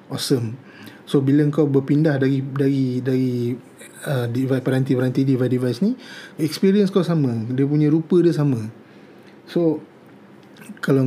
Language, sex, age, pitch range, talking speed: Malay, male, 30-49, 130-165 Hz, 130 wpm